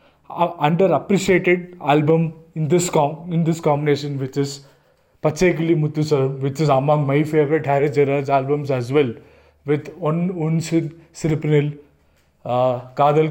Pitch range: 140-170 Hz